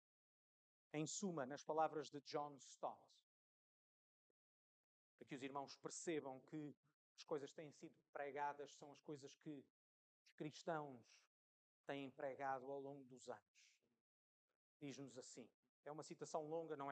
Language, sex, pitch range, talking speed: Portuguese, male, 140-175 Hz, 135 wpm